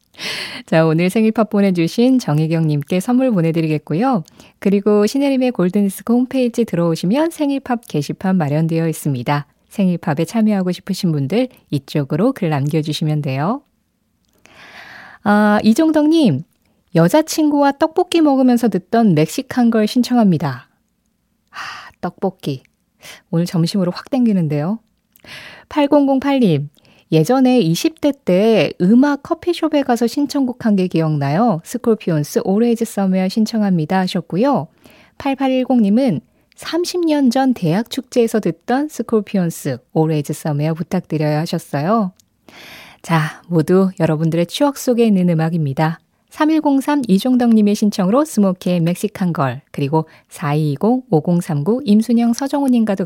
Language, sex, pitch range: Korean, female, 165-250 Hz